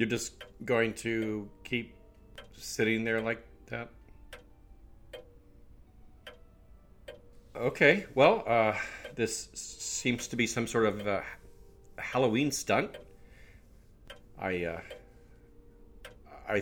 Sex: male